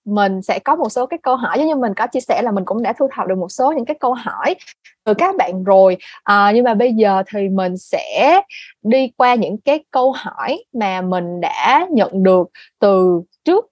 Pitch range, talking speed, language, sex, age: 190-265 Hz, 230 wpm, Vietnamese, female, 20-39